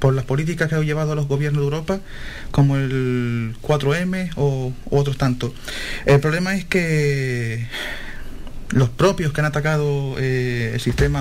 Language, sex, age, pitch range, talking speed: Spanish, male, 30-49, 130-155 Hz, 160 wpm